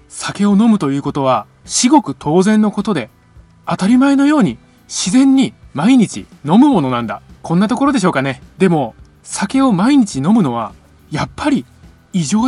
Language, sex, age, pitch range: Japanese, male, 20-39, 135-225 Hz